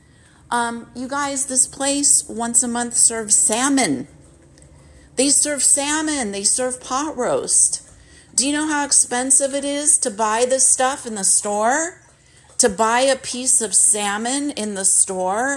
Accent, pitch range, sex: American, 175-250 Hz, female